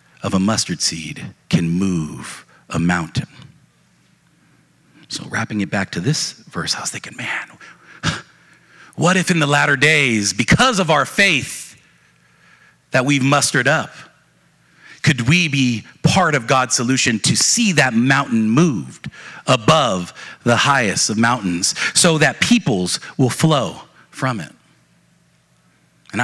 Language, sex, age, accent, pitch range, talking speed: English, male, 50-69, American, 95-145 Hz, 135 wpm